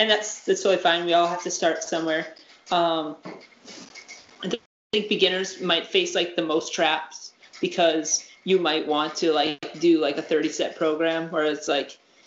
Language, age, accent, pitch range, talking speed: English, 20-39, American, 165-200 Hz, 175 wpm